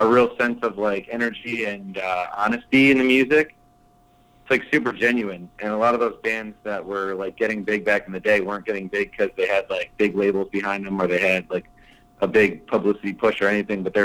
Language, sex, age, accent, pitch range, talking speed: English, male, 30-49, American, 100-115 Hz, 230 wpm